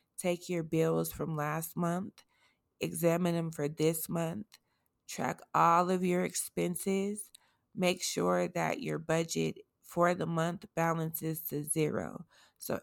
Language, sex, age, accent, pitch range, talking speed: English, female, 20-39, American, 155-180 Hz, 130 wpm